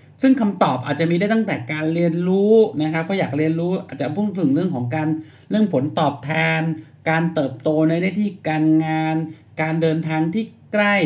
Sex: male